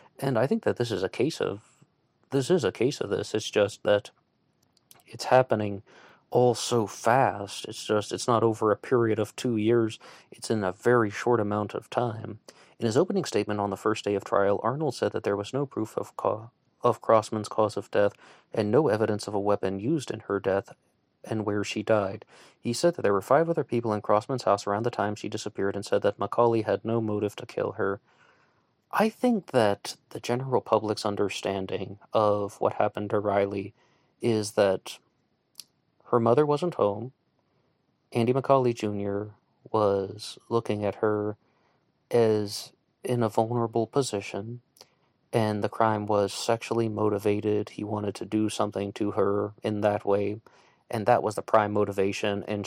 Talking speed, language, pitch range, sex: 180 wpm, English, 100-120 Hz, male